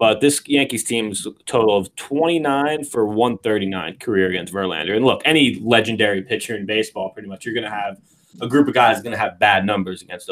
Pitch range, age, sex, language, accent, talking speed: 95-130 Hz, 20-39, male, English, American, 205 wpm